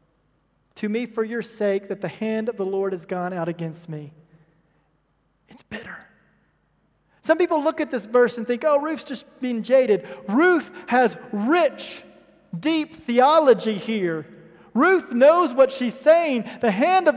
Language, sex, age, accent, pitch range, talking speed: English, male, 40-59, American, 200-275 Hz, 155 wpm